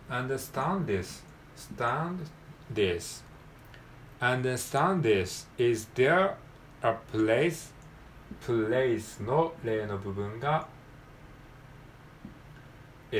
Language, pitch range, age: Japanese, 115-155 Hz, 40-59